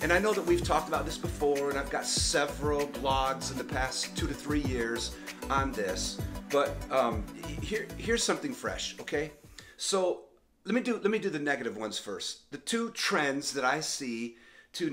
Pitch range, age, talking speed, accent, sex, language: 125-175 Hz, 40-59, 195 wpm, American, male, English